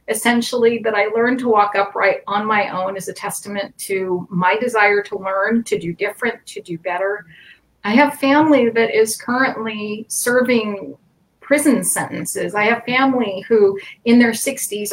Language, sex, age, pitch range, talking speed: English, female, 40-59, 205-250 Hz, 160 wpm